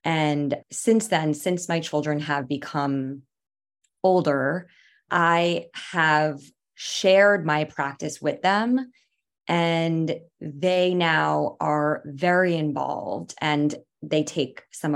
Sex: female